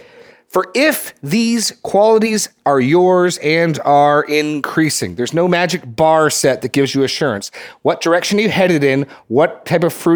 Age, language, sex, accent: 40-59, English, male, American